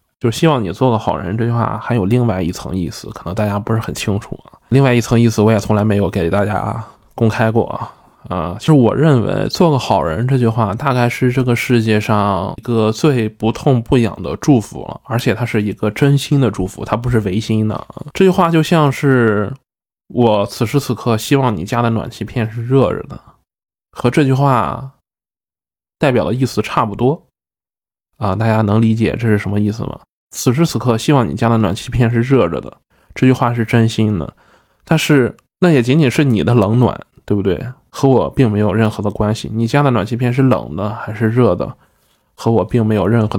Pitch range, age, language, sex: 105-125 Hz, 20-39, Chinese, male